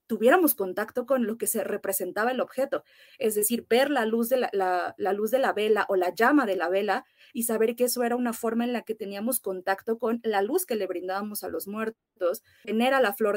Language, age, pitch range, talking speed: Spanish, 30-49, 200-235 Hz, 240 wpm